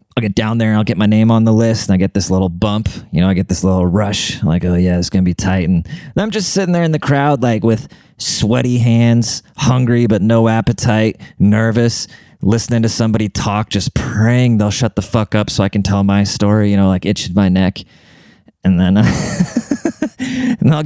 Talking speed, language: 215 wpm, English